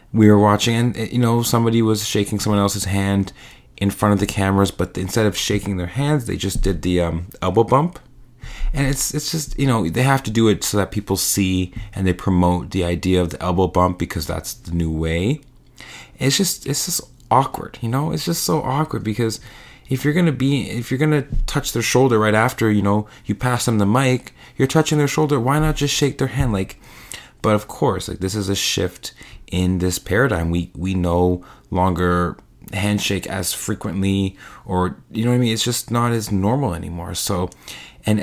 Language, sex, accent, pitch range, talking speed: English, male, American, 95-125 Hz, 210 wpm